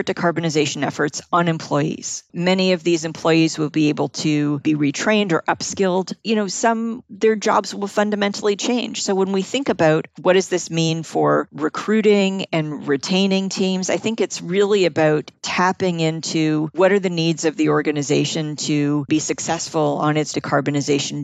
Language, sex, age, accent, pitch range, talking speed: English, female, 50-69, American, 155-185 Hz, 165 wpm